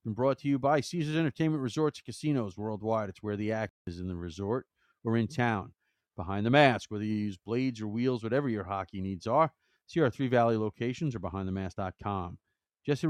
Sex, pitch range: male, 100-125 Hz